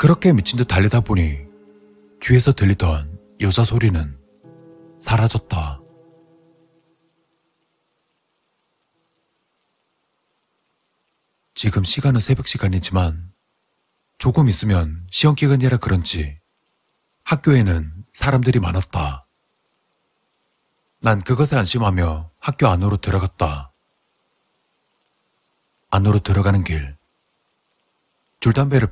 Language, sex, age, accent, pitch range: Korean, male, 40-59, native, 85-130 Hz